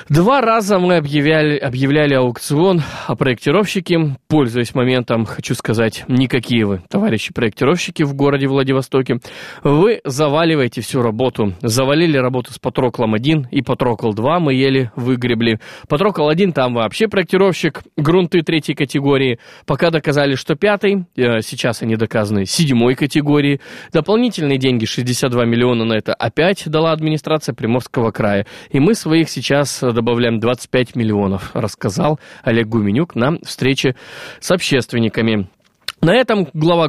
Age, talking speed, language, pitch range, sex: 20-39, 125 wpm, Russian, 125-165 Hz, male